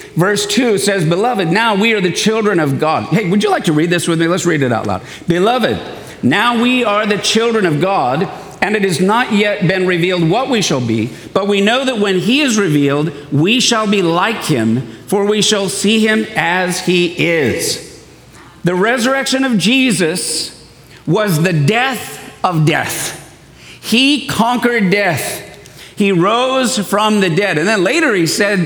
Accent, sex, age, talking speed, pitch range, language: American, male, 50-69, 180 wpm, 165-220 Hz, English